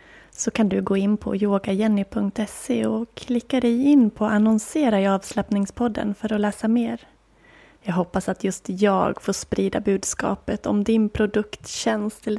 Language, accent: Swedish, native